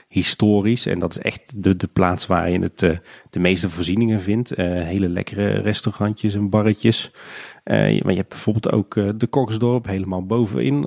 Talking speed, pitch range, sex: 175 wpm, 95-110 Hz, male